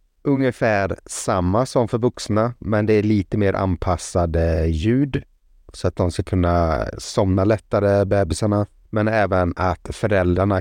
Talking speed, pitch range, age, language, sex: 135 wpm, 85-110 Hz, 30-49, Swedish, male